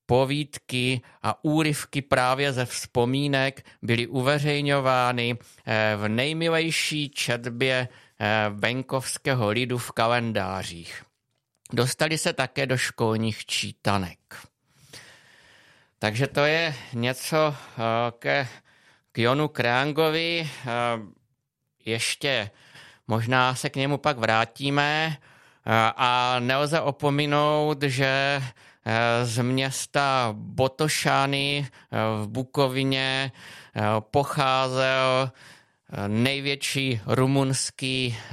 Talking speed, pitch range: 75 wpm, 115-135 Hz